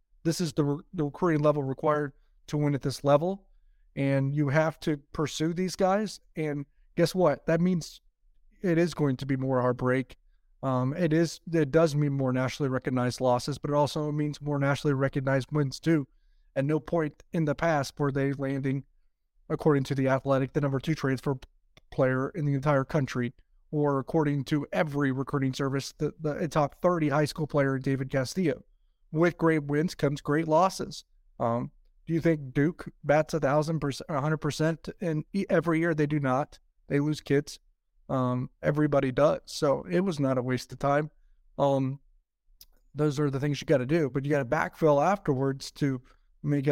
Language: English